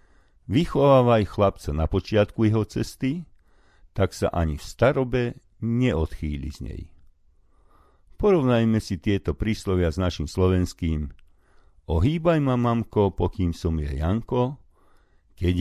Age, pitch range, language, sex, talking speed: 50-69, 80-110 Hz, Slovak, male, 110 wpm